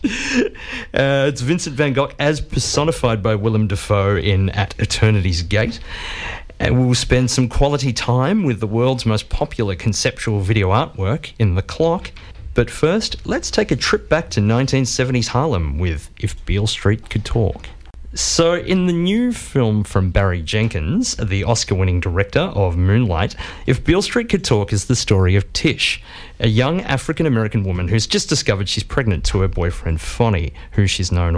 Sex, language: male, English